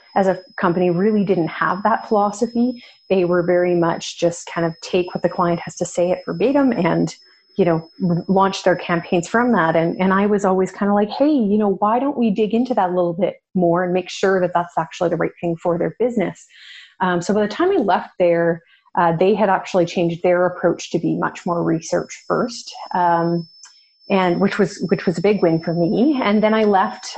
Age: 30-49